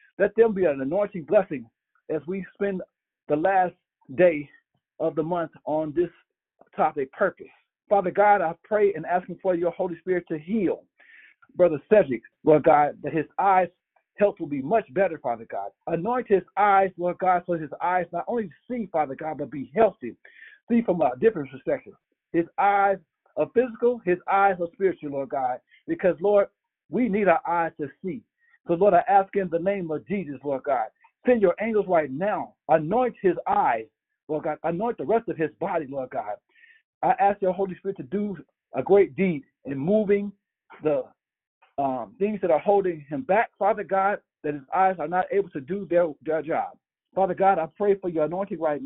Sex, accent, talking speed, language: male, American, 190 wpm, English